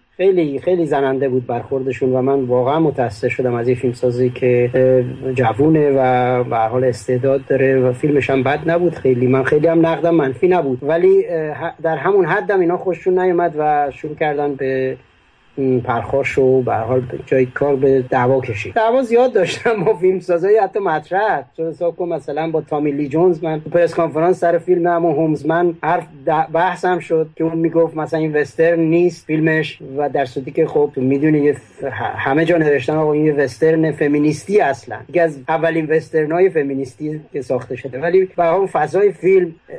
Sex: male